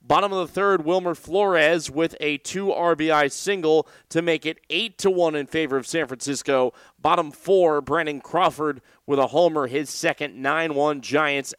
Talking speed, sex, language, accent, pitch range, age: 155 wpm, male, English, American, 135-165 Hz, 30-49